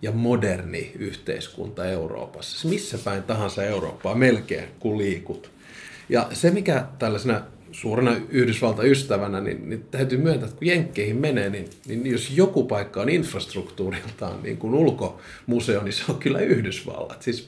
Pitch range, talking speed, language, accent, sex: 100-130 Hz, 135 wpm, Finnish, native, male